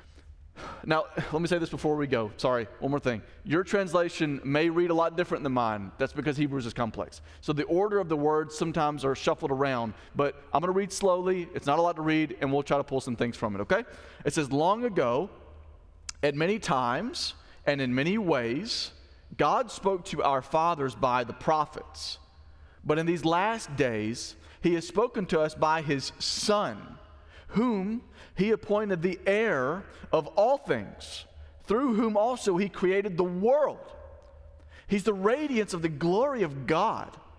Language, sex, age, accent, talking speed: English, male, 30-49, American, 180 wpm